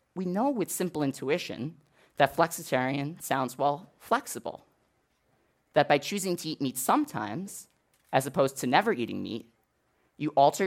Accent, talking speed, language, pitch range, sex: American, 140 wpm, English, 130-190 Hz, male